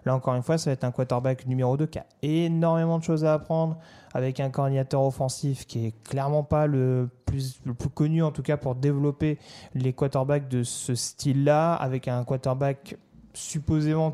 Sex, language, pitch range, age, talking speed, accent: male, French, 125-150 Hz, 20-39, 190 wpm, French